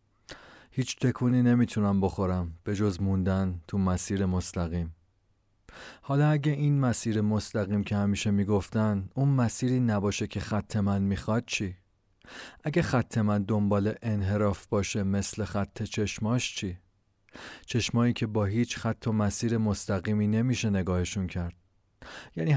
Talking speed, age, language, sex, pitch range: 130 wpm, 30-49, Persian, male, 95-125 Hz